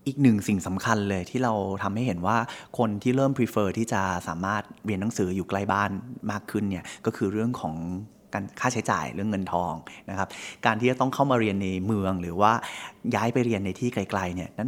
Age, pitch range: 20-39, 95-115 Hz